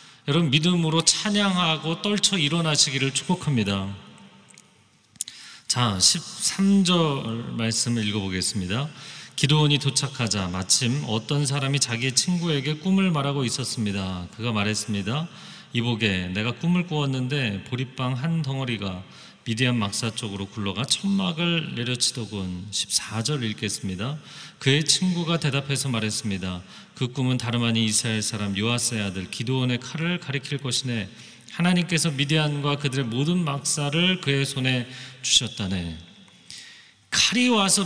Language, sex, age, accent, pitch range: Korean, male, 40-59, native, 115-165 Hz